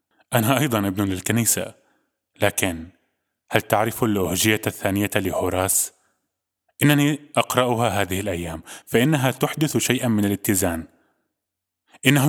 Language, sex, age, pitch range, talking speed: Arabic, male, 20-39, 95-120 Hz, 100 wpm